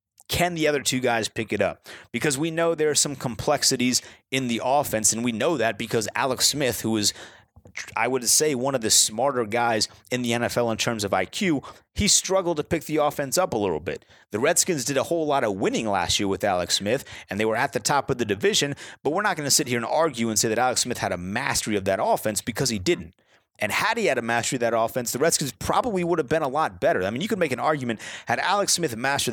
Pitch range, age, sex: 110-145 Hz, 30-49, male